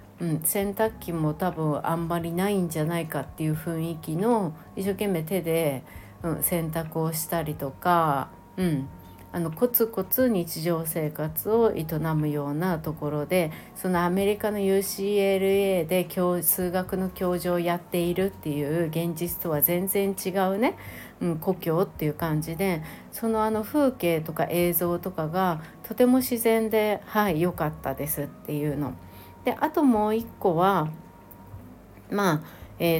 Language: Japanese